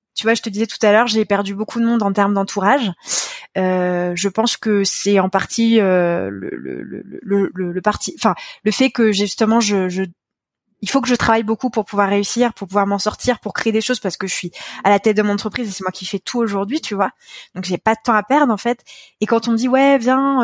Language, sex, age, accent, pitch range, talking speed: French, female, 20-39, French, 190-235 Hz, 240 wpm